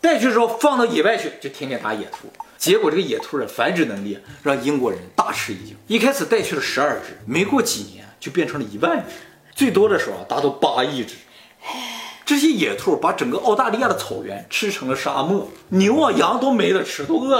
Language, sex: Chinese, male